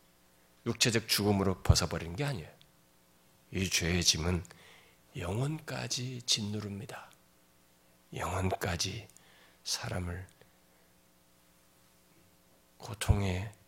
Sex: male